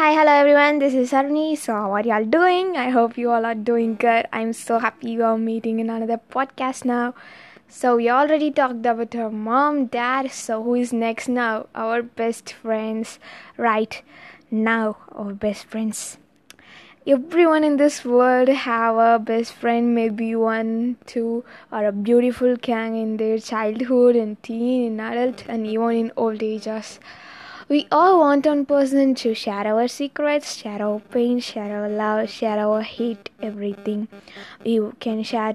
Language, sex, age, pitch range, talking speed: Tamil, female, 20-39, 220-255 Hz, 165 wpm